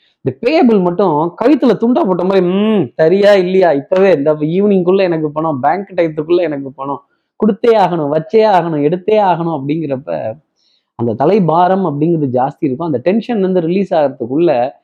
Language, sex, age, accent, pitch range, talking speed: Tamil, male, 20-39, native, 145-185 Hz, 150 wpm